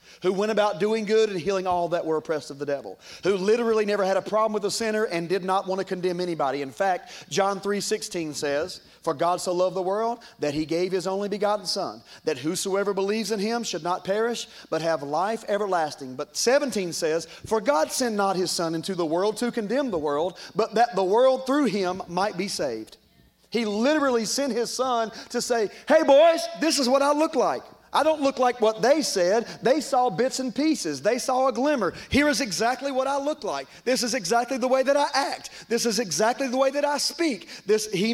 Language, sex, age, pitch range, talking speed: English, male, 40-59, 180-250 Hz, 220 wpm